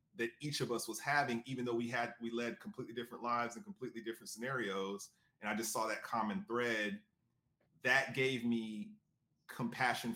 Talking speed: 175 wpm